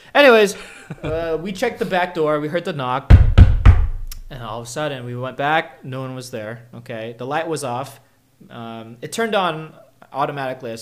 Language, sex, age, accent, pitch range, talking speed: English, male, 20-39, American, 110-155 Hz, 190 wpm